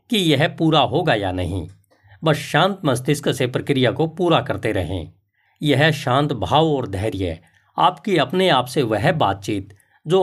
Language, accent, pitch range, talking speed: Hindi, native, 105-155 Hz, 160 wpm